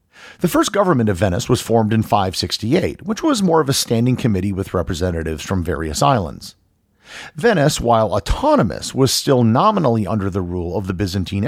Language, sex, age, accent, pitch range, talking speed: English, male, 50-69, American, 95-130 Hz, 175 wpm